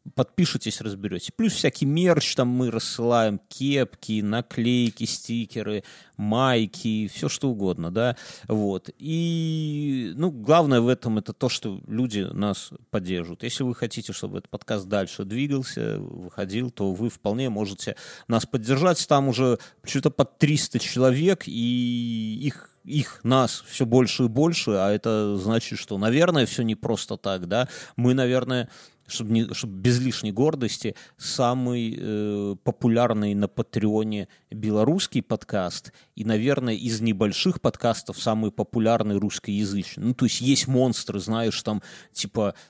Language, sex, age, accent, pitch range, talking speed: Russian, male, 30-49, native, 105-130 Hz, 140 wpm